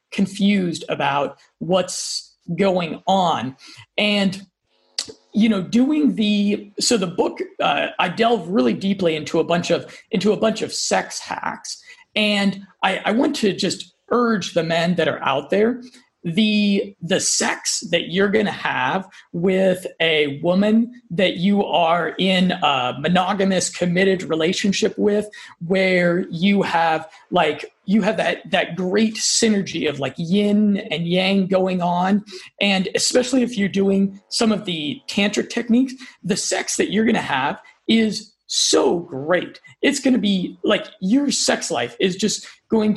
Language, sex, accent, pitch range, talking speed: English, male, American, 180-225 Hz, 150 wpm